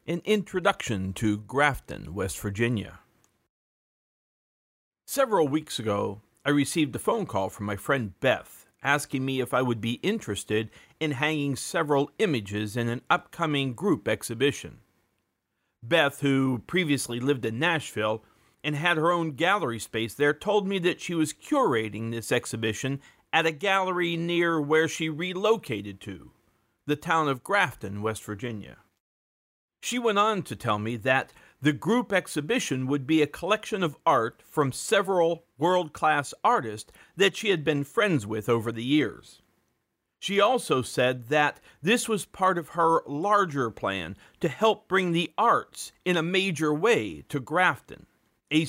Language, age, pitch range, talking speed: English, 40-59, 115-170 Hz, 150 wpm